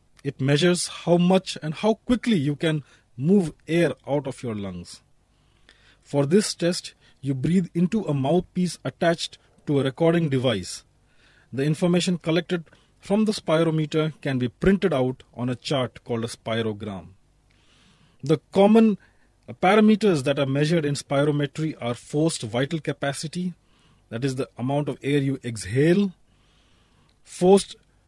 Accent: Indian